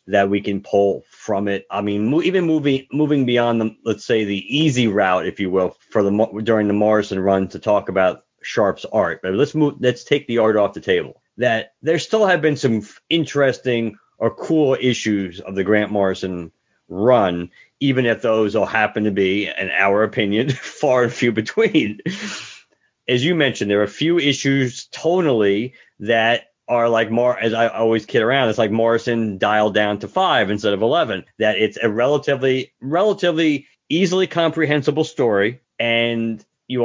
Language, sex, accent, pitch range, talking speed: English, male, American, 105-140 Hz, 175 wpm